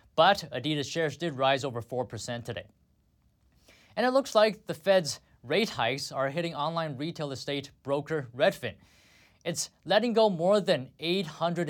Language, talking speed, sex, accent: English, 150 wpm, male, American